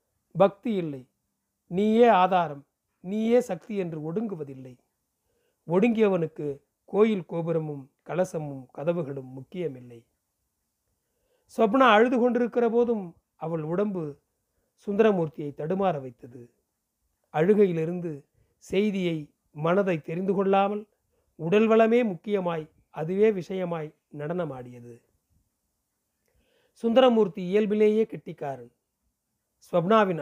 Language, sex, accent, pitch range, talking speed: Tamil, male, native, 150-205 Hz, 75 wpm